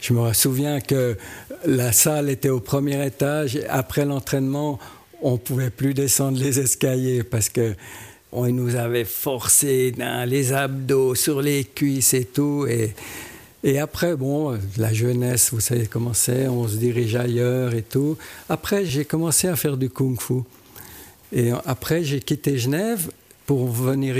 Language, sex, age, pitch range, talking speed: French, male, 60-79, 120-145 Hz, 155 wpm